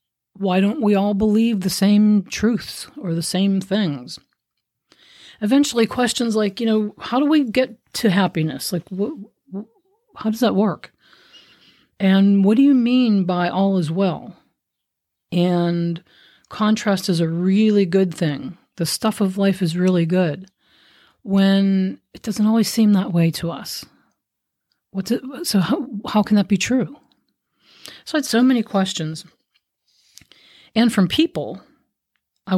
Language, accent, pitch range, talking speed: English, American, 185-225 Hz, 140 wpm